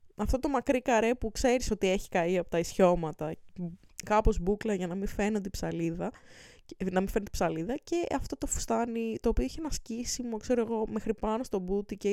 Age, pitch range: 20-39, 185-265 Hz